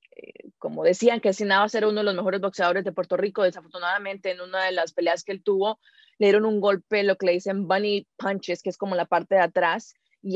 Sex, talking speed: female, 240 wpm